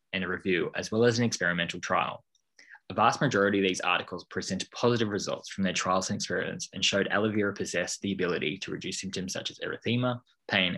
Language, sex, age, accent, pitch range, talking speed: English, male, 20-39, Australian, 95-110 Hz, 205 wpm